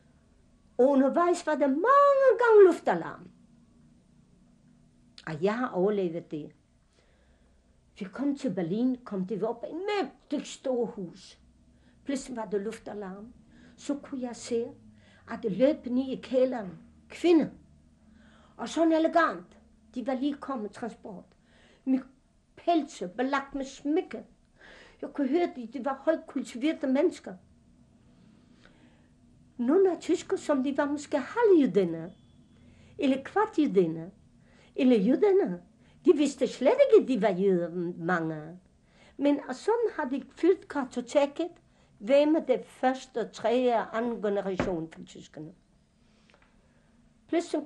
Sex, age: female, 60-79